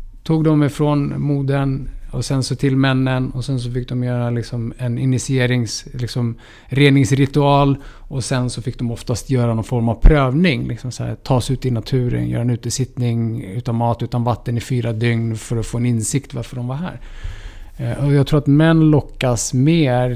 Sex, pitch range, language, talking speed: male, 115-140 Hz, Swedish, 190 wpm